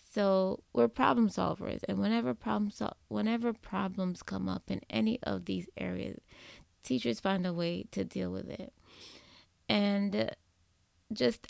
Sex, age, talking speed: female, 20-39, 140 wpm